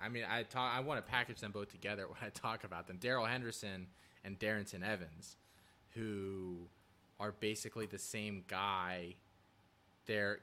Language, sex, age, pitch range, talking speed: English, male, 20-39, 95-110 Hz, 160 wpm